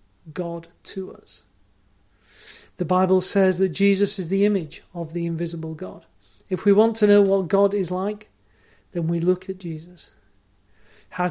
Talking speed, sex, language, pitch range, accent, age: 160 wpm, male, English, 165-205 Hz, British, 40-59